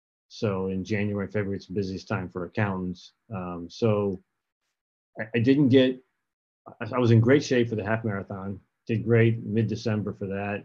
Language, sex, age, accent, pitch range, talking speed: English, male, 40-59, American, 100-115 Hz, 175 wpm